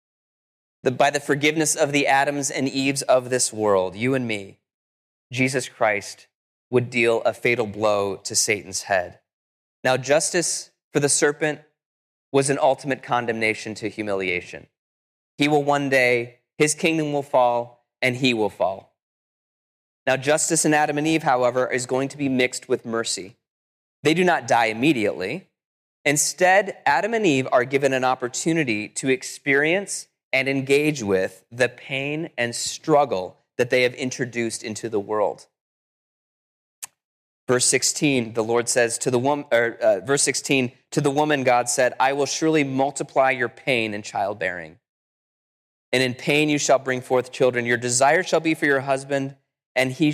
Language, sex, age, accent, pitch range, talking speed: English, male, 20-39, American, 120-145 Hz, 160 wpm